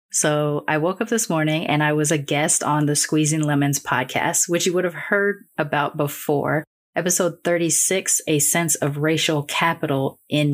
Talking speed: 175 wpm